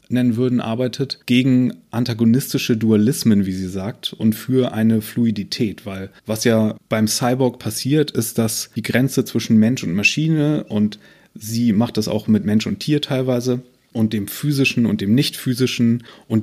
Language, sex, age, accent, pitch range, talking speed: German, male, 30-49, German, 110-130 Hz, 165 wpm